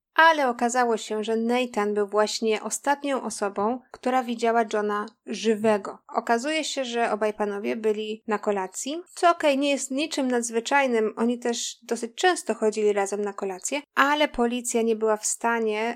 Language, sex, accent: Polish, female, native